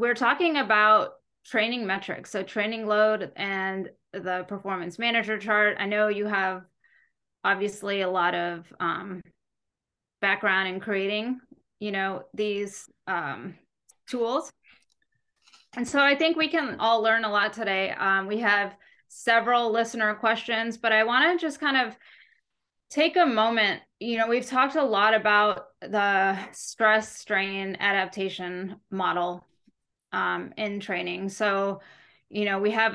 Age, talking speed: 20-39, 140 wpm